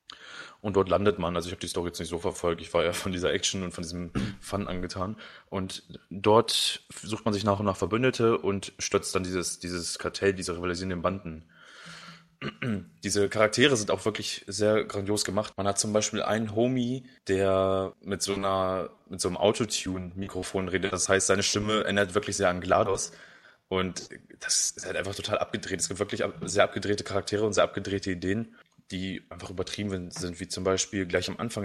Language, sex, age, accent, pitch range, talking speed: English, male, 20-39, German, 95-110 Hz, 195 wpm